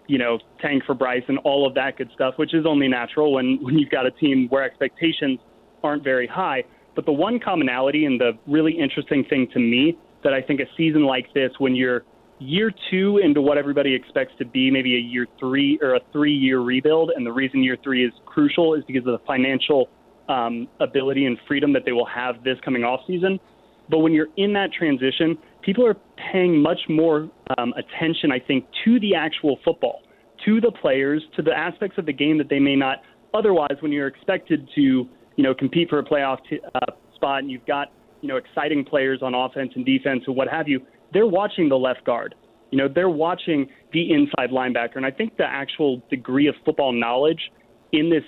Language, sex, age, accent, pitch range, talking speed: English, male, 30-49, American, 130-155 Hz, 210 wpm